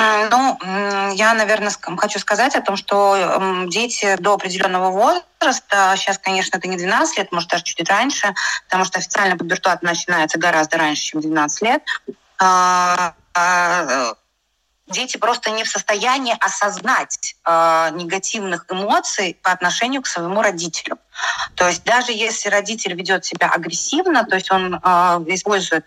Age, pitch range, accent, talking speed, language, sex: 20-39, 185-245 Hz, native, 130 wpm, Russian, female